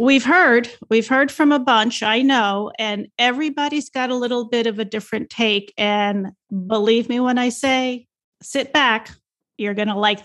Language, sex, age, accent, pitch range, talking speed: English, female, 40-59, American, 210-260 Hz, 180 wpm